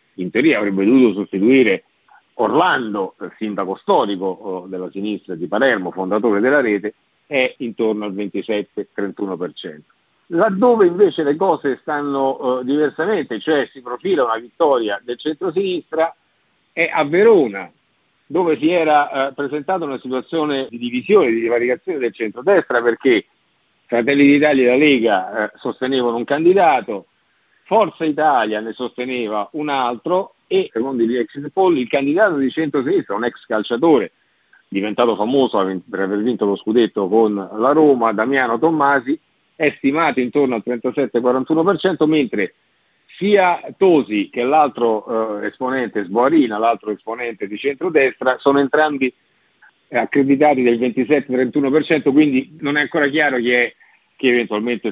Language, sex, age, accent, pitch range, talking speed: Italian, male, 50-69, native, 115-150 Hz, 130 wpm